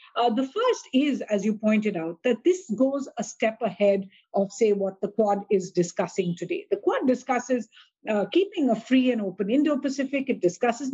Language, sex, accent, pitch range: English, female, Indian, 205-260 Hz